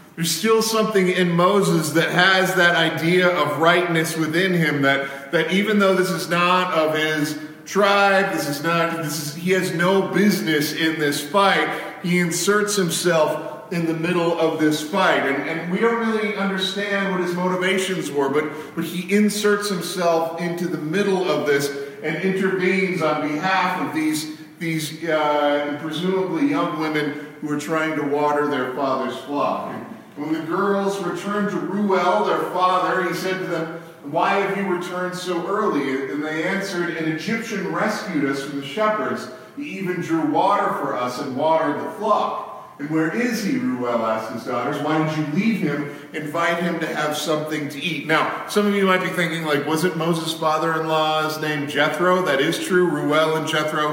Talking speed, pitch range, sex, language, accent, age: 180 wpm, 150-185 Hz, male, English, American, 40-59